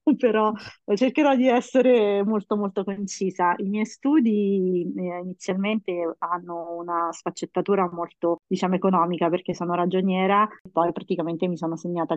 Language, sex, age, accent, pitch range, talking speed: Italian, female, 30-49, native, 170-185 Hz, 125 wpm